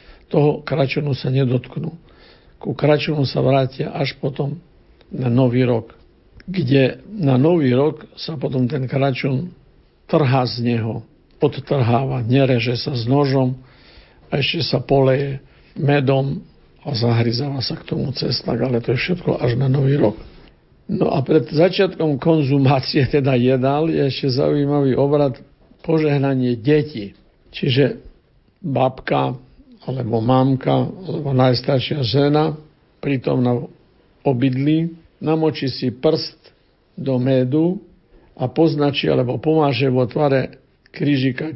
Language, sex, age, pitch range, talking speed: Slovak, male, 60-79, 130-155 Hz, 120 wpm